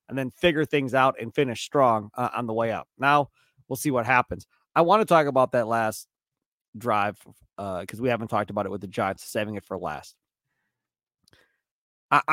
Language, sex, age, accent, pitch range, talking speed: English, male, 30-49, American, 130-215 Hz, 200 wpm